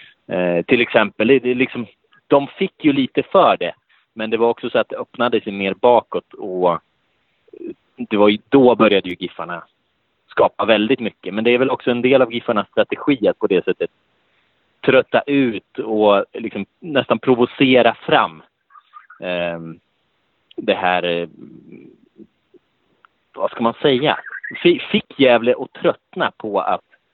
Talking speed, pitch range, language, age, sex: 145 wpm, 100-135 Hz, Swedish, 30-49, male